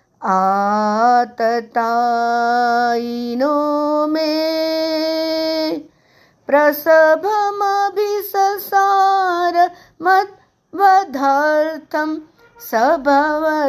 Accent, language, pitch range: native, Hindi, 230-310 Hz